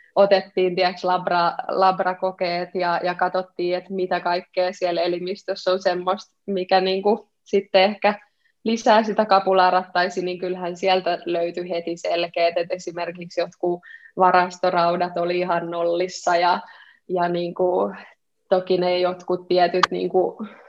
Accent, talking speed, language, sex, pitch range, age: native, 120 wpm, Finnish, female, 180-195 Hz, 20-39